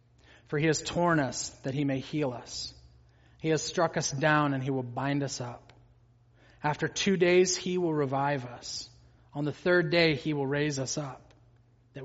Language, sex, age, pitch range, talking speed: English, male, 30-49, 120-150 Hz, 190 wpm